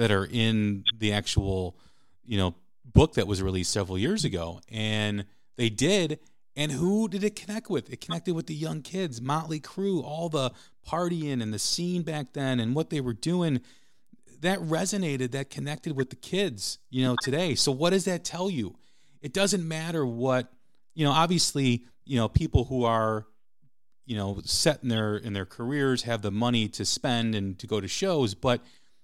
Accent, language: American, English